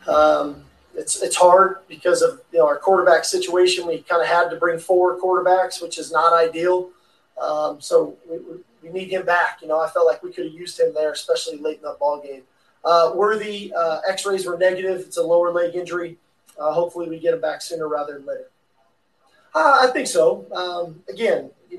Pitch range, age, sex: 160-185 Hz, 20-39, male